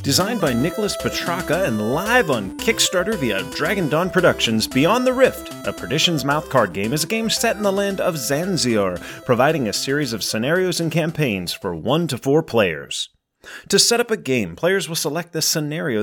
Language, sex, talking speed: English, male, 190 wpm